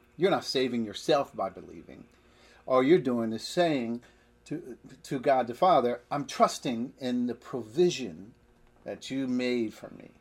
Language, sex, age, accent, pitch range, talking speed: English, male, 50-69, American, 100-125 Hz, 155 wpm